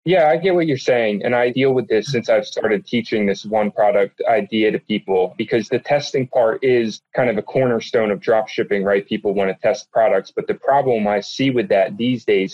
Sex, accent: male, American